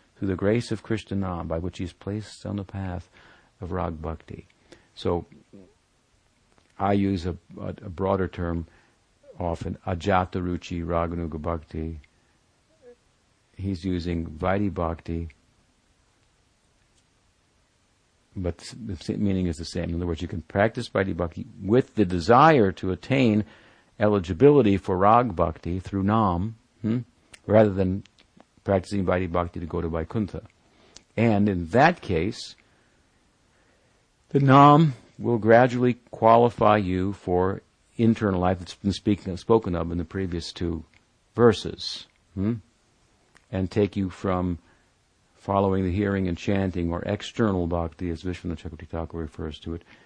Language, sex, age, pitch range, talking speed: English, male, 60-79, 85-105 Hz, 130 wpm